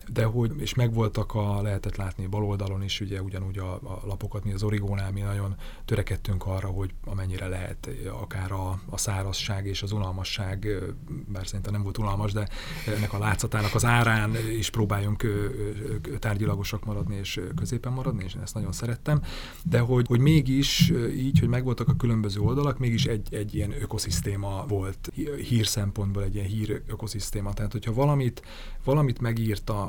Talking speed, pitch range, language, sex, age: 165 wpm, 100-115 Hz, Hungarian, male, 30-49